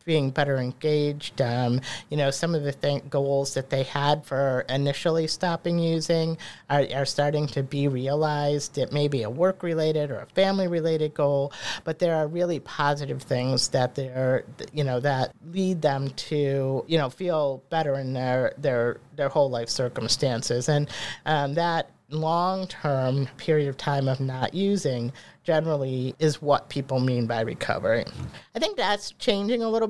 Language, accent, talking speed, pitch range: English, American, 170 wpm, 130-160 Hz